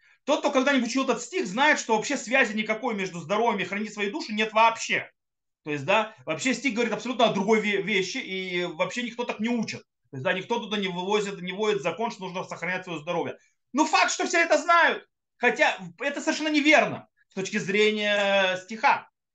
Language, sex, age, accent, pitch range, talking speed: Russian, male, 30-49, native, 170-265 Hz, 200 wpm